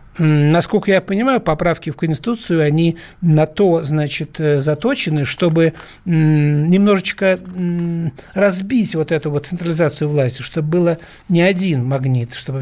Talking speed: 120 wpm